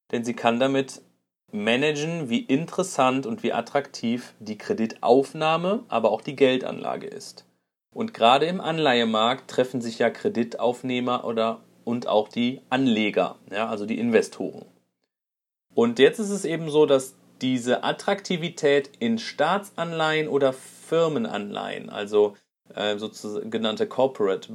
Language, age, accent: German, 30-49, German